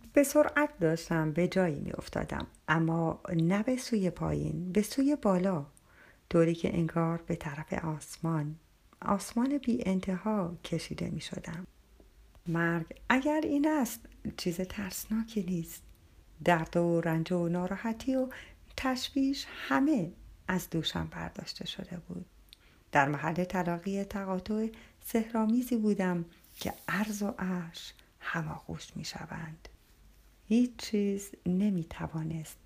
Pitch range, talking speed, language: 160-215 Hz, 115 wpm, Persian